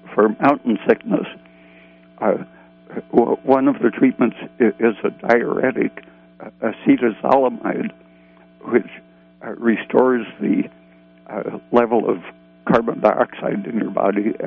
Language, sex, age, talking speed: English, male, 60-79, 95 wpm